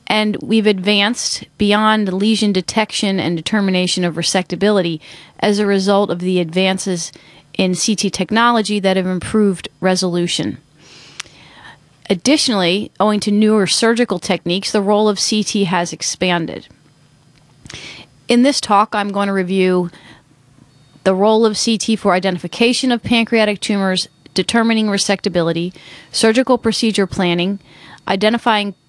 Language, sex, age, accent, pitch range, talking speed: English, female, 30-49, American, 175-215 Hz, 120 wpm